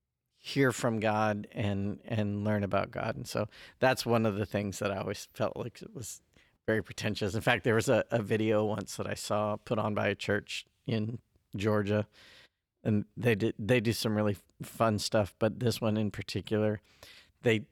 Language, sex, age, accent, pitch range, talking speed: English, male, 50-69, American, 110-130 Hz, 195 wpm